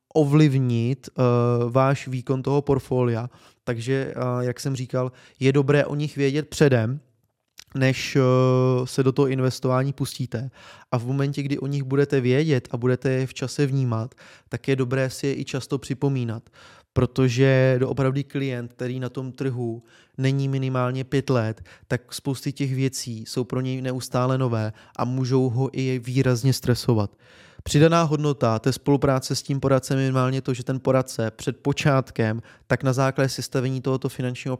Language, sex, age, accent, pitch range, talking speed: Czech, male, 20-39, native, 125-135 Hz, 165 wpm